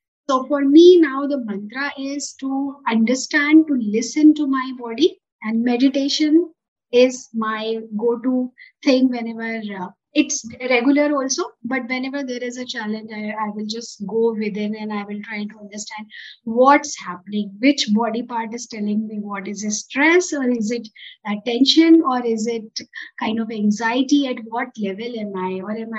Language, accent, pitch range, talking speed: English, Indian, 220-280 Hz, 165 wpm